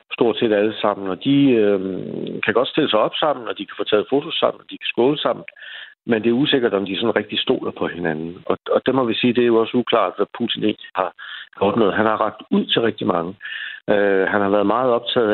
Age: 60-79